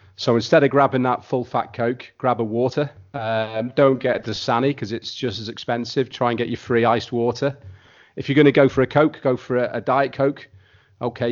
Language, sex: English, male